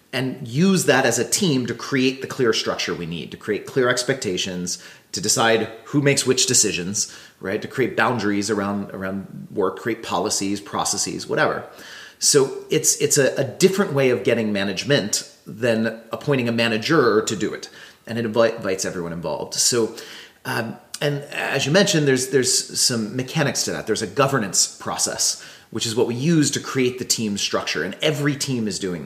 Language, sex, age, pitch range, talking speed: German, male, 30-49, 100-135 Hz, 180 wpm